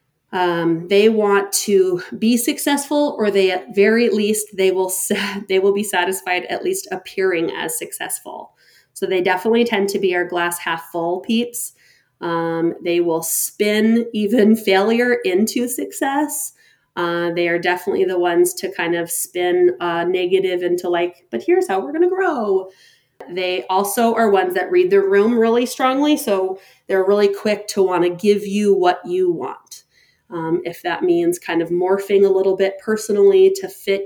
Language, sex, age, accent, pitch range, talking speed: English, female, 30-49, American, 185-235 Hz, 175 wpm